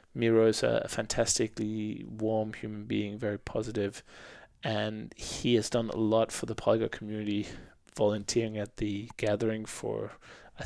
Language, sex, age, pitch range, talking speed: English, male, 20-39, 105-120 Hz, 140 wpm